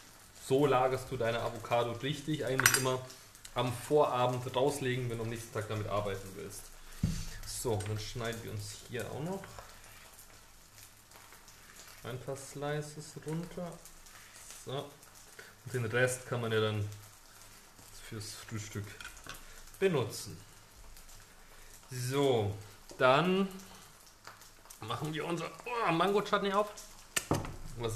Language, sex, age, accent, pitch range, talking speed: German, male, 30-49, German, 105-145 Hz, 110 wpm